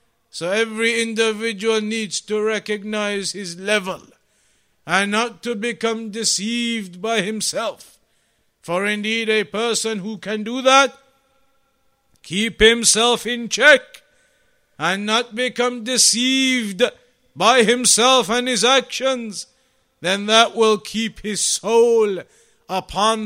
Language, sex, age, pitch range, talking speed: English, male, 50-69, 180-225 Hz, 110 wpm